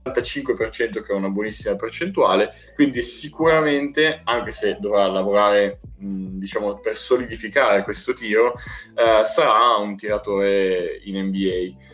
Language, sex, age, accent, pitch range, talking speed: Italian, male, 20-39, native, 100-140 Hz, 115 wpm